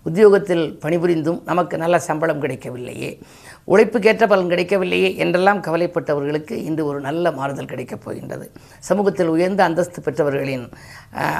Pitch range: 150-180 Hz